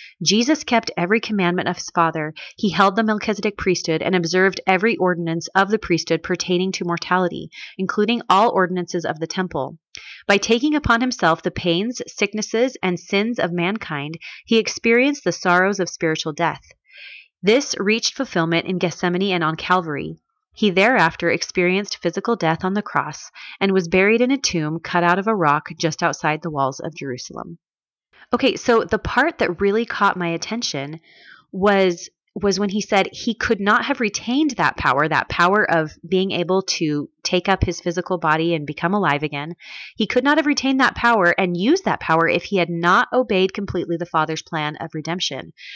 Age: 30-49